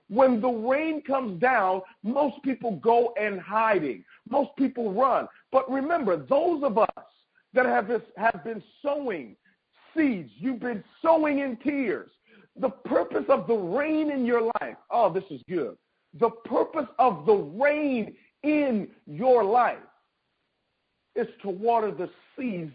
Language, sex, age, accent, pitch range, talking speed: English, male, 50-69, American, 230-280 Hz, 145 wpm